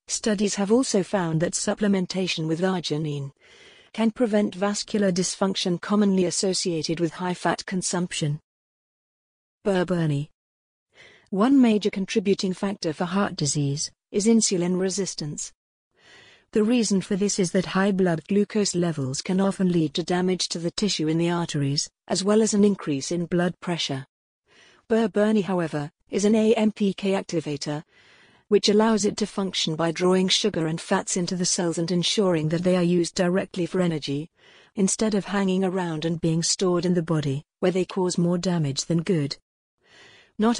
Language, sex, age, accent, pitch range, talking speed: English, female, 50-69, British, 165-200 Hz, 155 wpm